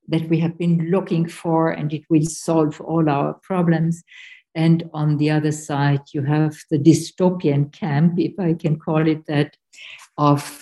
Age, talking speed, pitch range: 50-69, 170 wpm, 145-170 Hz